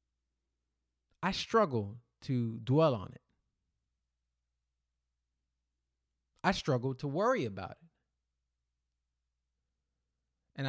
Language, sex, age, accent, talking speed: English, male, 20-39, American, 75 wpm